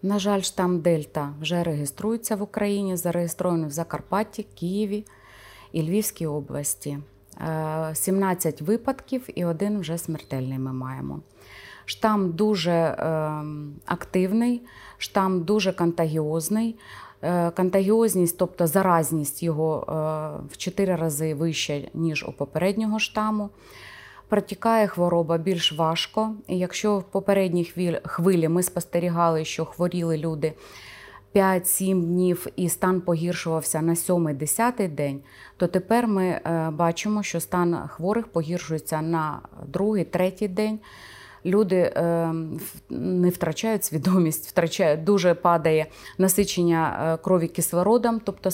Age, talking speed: 30-49, 105 wpm